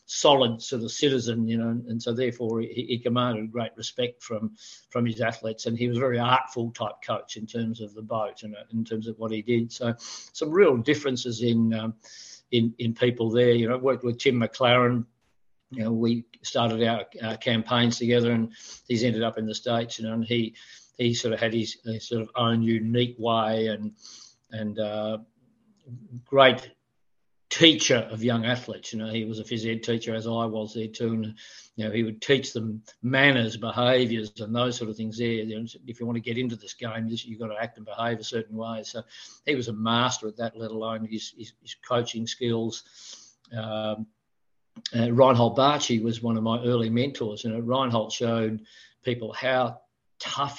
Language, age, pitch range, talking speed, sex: English, 50-69, 110-120 Hz, 205 wpm, male